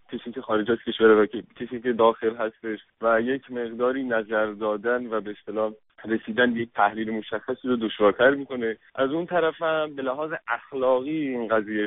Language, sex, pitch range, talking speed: English, male, 115-135 Hz, 175 wpm